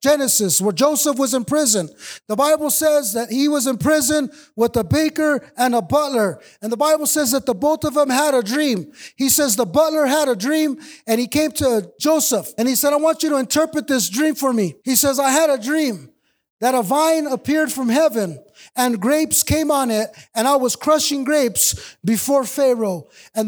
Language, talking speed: English, 205 wpm